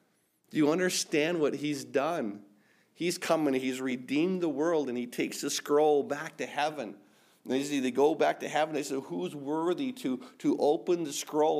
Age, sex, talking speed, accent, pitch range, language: 50-69, male, 195 wpm, American, 140-175 Hz, English